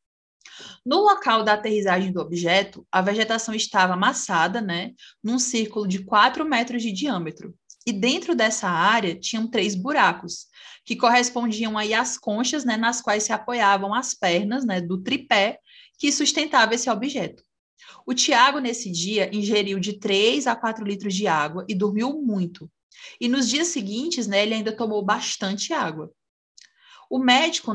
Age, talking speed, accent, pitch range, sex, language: 20-39, 150 wpm, Brazilian, 190-240 Hz, female, Portuguese